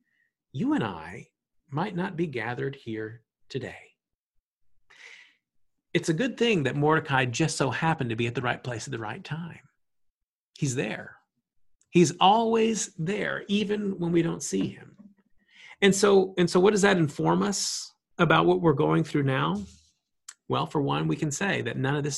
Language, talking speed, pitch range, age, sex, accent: English, 170 wpm, 135-190 Hz, 40-59, male, American